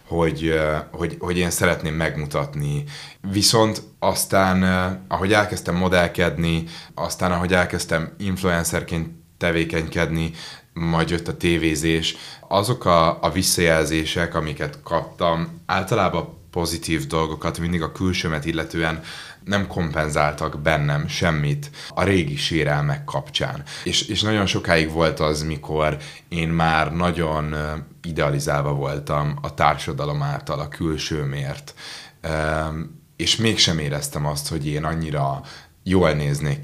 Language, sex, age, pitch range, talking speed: Hungarian, male, 20-39, 75-90 Hz, 110 wpm